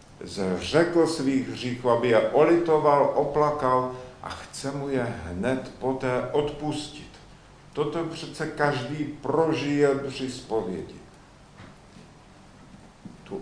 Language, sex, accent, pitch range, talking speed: Czech, male, native, 115-150 Hz, 95 wpm